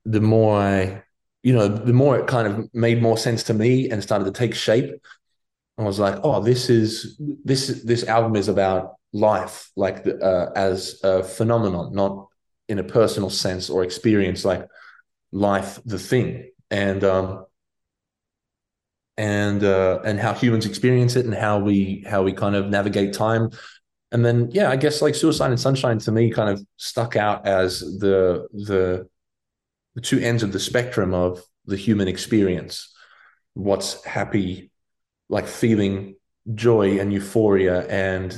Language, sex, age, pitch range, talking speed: English, male, 20-39, 95-115 Hz, 160 wpm